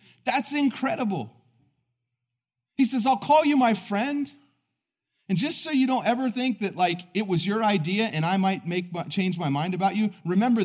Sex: male